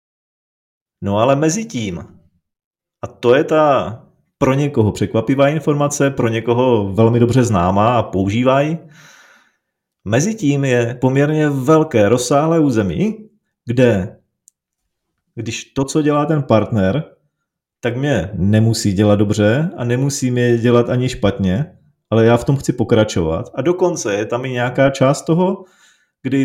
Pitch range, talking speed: 115-150 Hz, 135 wpm